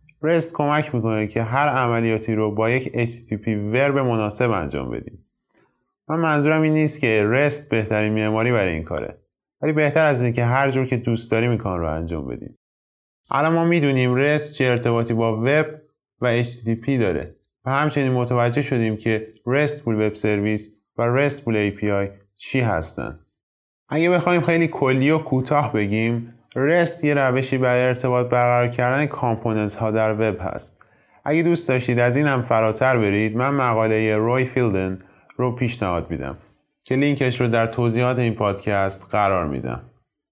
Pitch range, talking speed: 110-135 Hz, 155 wpm